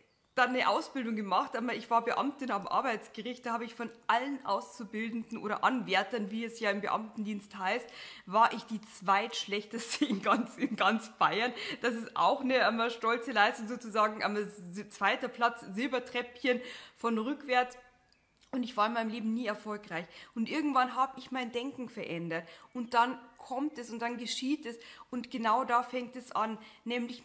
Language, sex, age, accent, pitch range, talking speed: German, female, 20-39, German, 215-255 Hz, 165 wpm